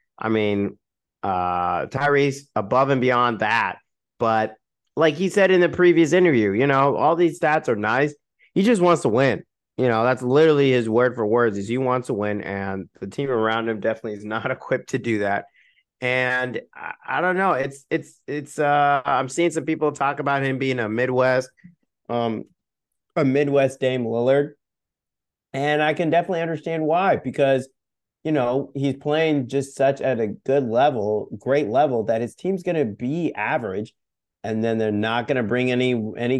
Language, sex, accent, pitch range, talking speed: English, male, American, 115-155 Hz, 185 wpm